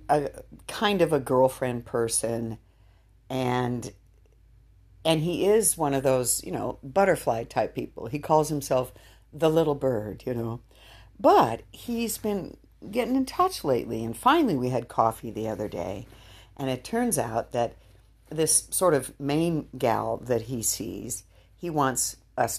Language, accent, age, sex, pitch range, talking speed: English, American, 60-79, female, 110-150 Hz, 150 wpm